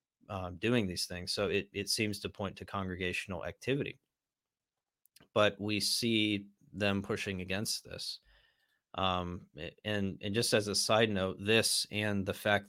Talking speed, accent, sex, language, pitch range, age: 150 wpm, American, male, English, 95-105 Hz, 30-49